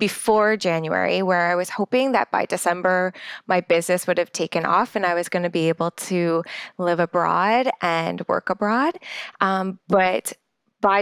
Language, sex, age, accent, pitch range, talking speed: English, female, 20-39, American, 170-200 Hz, 170 wpm